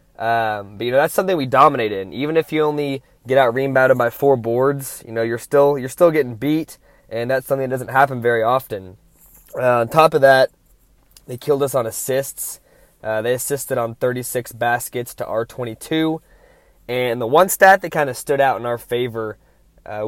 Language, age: English, 20-39